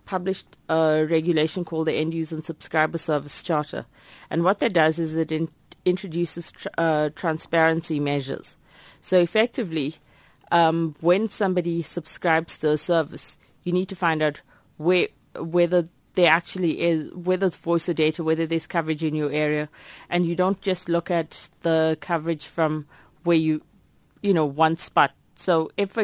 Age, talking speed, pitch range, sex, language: 30-49, 165 wpm, 150-170 Hz, female, English